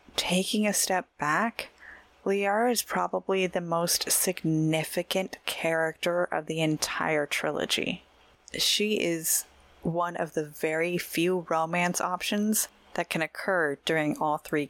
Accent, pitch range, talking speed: American, 155-195 Hz, 125 wpm